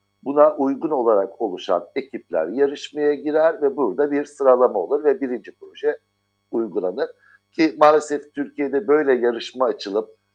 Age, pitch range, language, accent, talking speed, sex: 60-79, 100-165 Hz, Turkish, native, 130 wpm, male